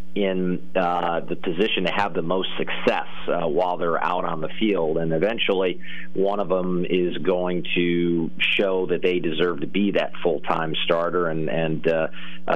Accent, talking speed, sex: American, 175 wpm, male